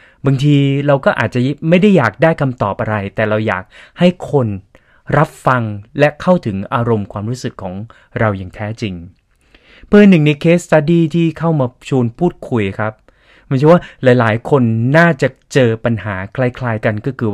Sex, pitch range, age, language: male, 115-155 Hz, 20-39, Thai